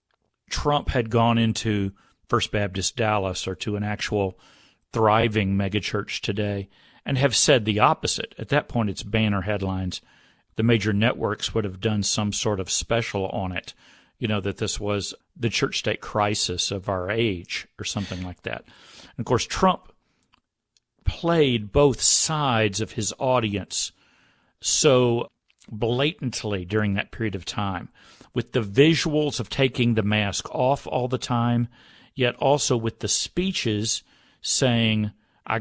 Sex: male